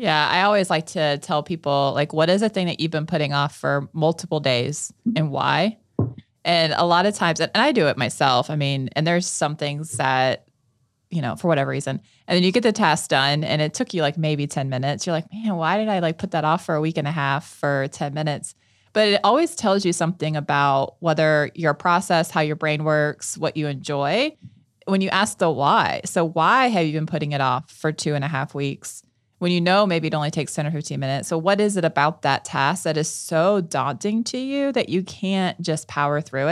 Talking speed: 235 wpm